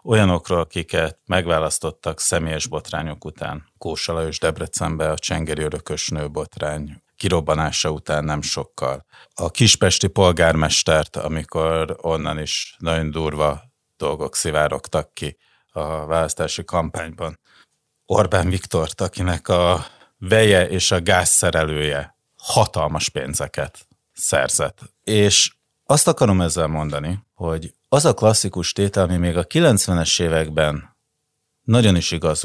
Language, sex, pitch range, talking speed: Hungarian, male, 75-100 Hz, 110 wpm